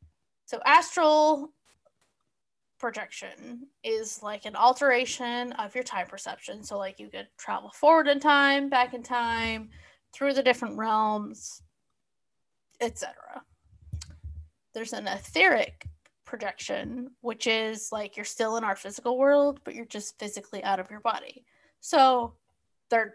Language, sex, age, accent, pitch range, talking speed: English, female, 10-29, American, 210-280 Hz, 130 wpm